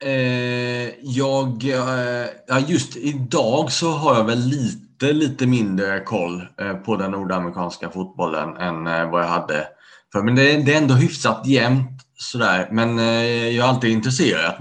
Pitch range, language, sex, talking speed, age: 95-120 Hz, Swedish, male, 125 wpm, 30-49